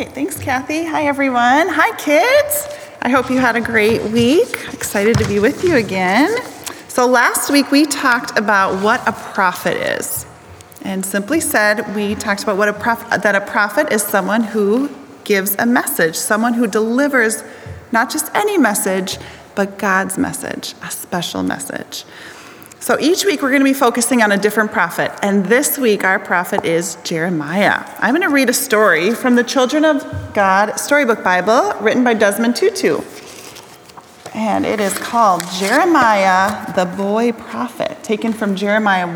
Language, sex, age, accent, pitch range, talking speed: English, female, 30-49, American, 200-275 Hz, 160 wpm